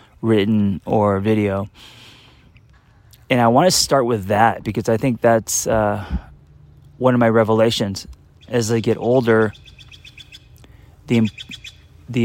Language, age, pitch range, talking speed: English, 30-49, 95-120 Hz, 120 wpm